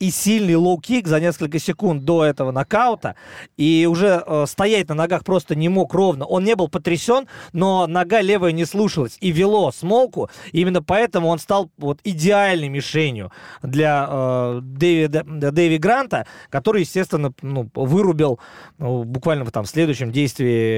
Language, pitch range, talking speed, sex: Russian, 145-185 Hz, 145 wpm, male